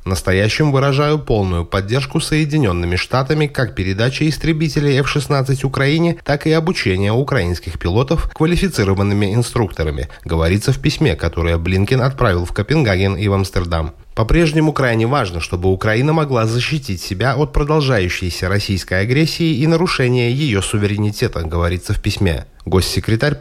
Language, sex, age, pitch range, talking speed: Russian, male, 30-49, 95-145 Hz, 130 wpm